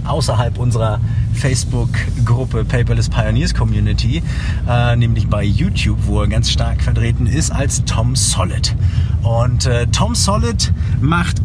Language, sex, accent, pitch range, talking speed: German, male, German, 90-125 Hz, 125 wpm